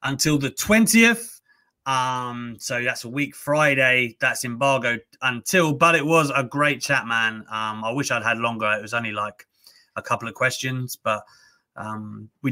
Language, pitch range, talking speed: English, 125-170 Hz, 175 wpm